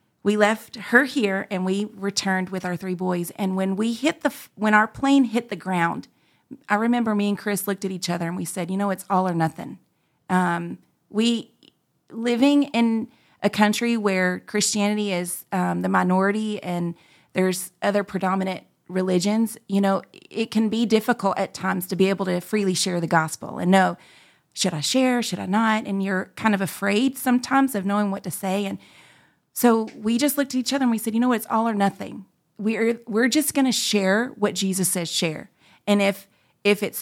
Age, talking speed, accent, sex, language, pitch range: 30-49, 205 wpm, American, female, English, 185-230 Hz